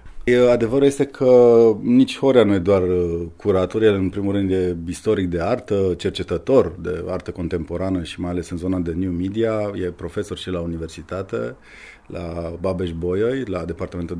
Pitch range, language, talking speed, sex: 85-110 Hz, Romanian, 165 wpm, male